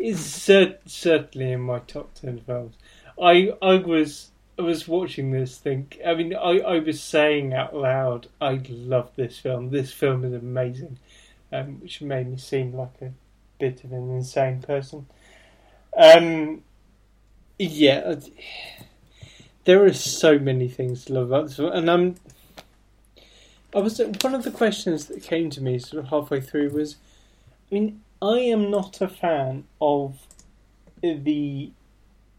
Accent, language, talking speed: British, English, 155 wpm